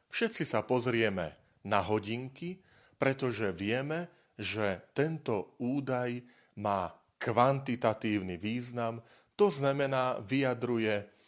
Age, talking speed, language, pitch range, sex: 40-59, 85 wpm, Slovak, 100-130 Hz, male